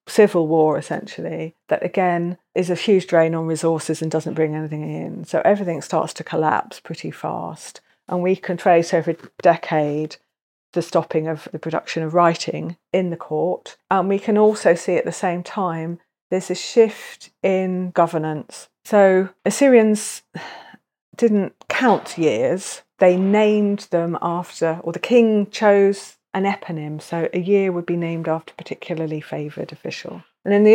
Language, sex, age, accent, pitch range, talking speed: English, female, 40-59, British, 160-190 Hz, 160 wpm